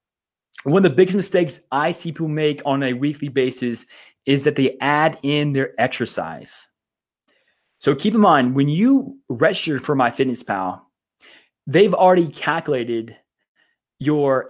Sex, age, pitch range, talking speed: male, 20-39, 135-170 Hz, 140 wpm